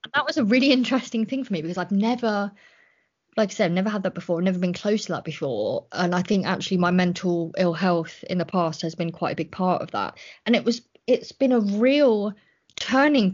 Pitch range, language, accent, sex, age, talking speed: 180-215 Hz, English, British, female, 20-39, 230 wpm